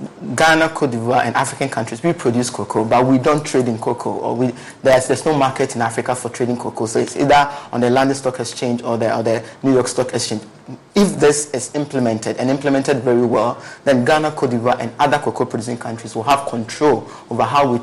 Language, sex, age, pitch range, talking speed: English, male, 30-49, 120-140 Hz, 215 wpm